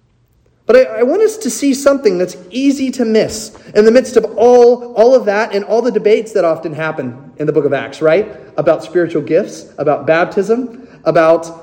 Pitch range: 200-275 Hz